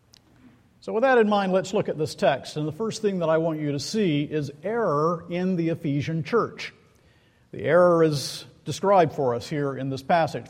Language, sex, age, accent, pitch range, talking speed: English, male, 50-69, American, 140-175 Hz, 205 wpm